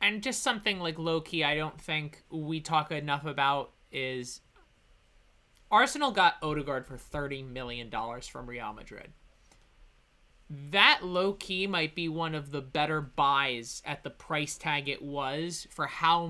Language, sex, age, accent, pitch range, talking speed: English, male, 20-39, American, 150-195 Hz, 145 wpm